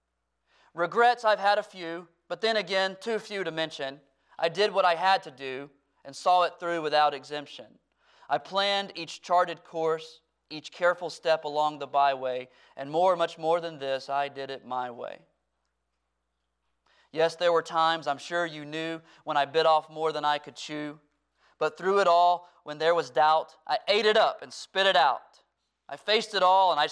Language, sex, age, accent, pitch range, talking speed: English, male, 30-49, American, 135-175 Hz, 190 wpm